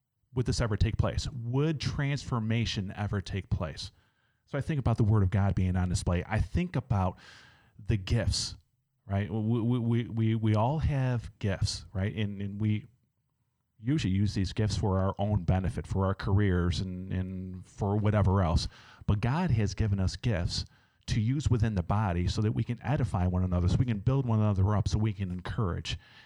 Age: 40-59